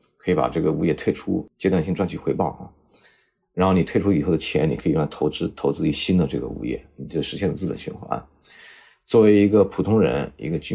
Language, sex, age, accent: Chinese, male, 30-49, native